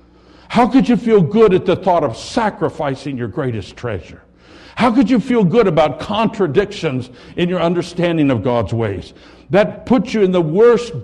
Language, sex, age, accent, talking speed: English, male, 60-79, American, 175 wpm